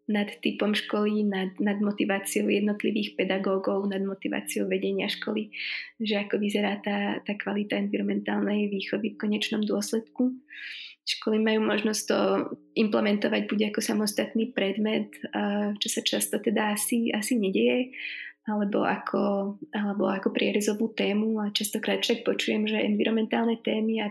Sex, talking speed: female, 130 wpm